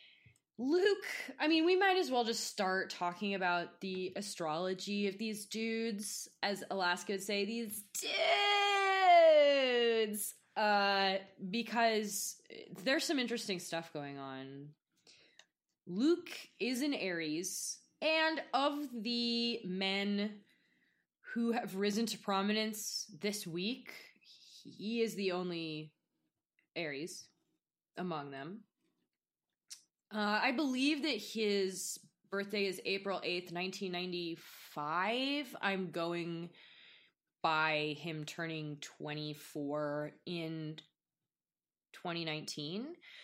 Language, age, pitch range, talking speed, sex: English, 20-39, 175-240 Hz, 95 wpm, female